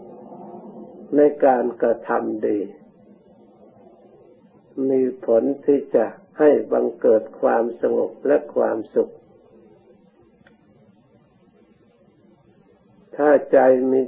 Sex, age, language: male, 60-79, Thai